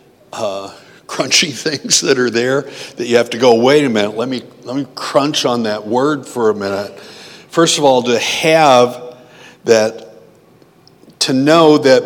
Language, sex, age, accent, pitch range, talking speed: English, male, 60-79, American, 125-155 Hz, 170 wpm